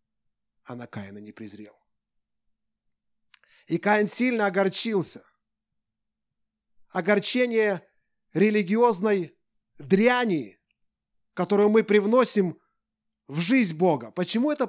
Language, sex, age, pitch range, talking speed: Russian, male, 30-49, 160-220 Hz, 80 wpm